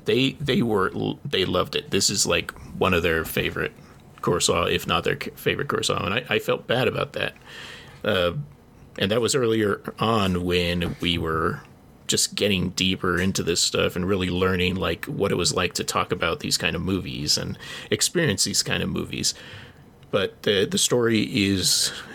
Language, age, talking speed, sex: English, 30-49, 180 wpm, male